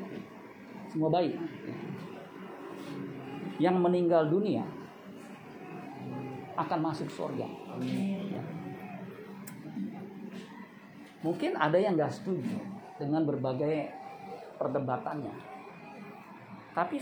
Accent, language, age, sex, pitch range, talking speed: native, Indonesian, 50-69, male, 150-200 Hz, 65 wpm